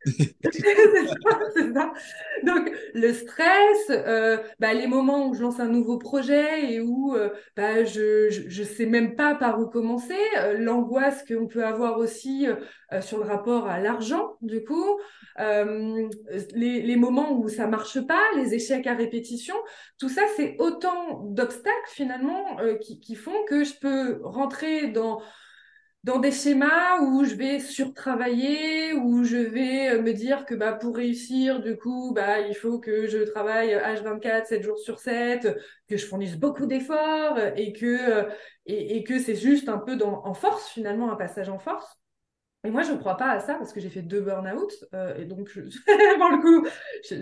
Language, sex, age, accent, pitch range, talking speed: French, female, 20-39, French, 215-280 Hz, 185 wpm